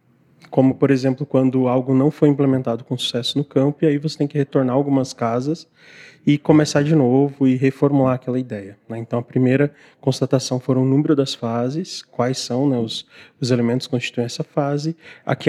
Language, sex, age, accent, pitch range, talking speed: Portuguese, male, 20-39, Brazilian, 125-145 Hz, 185 wpm